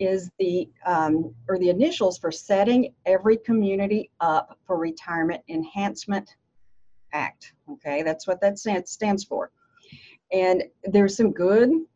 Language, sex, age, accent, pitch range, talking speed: English, female, 40-59, American, 180-220 Hz, 125 wpm